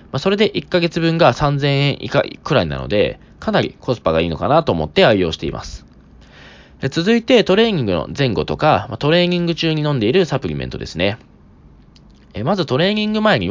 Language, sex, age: Japanese, male, 20-39